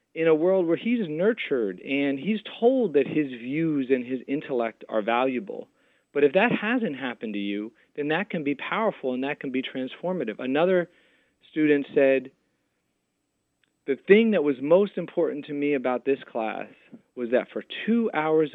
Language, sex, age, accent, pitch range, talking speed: English, male, 40-59, American, 125-175 Hz, 170 wpm